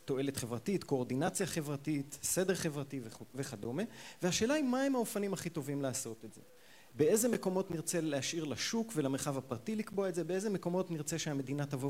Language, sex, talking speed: Hebrew, male, 165 wpm